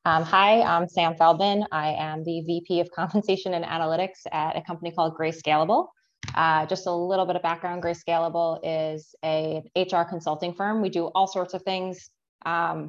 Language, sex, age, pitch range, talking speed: English, female, 20-39, 160-180 Hz, 185 wpm